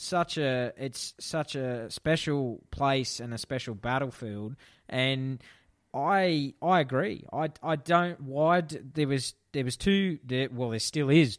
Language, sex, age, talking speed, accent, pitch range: English, male, 20-39, 150 wpm, Australian, 120-140 Hz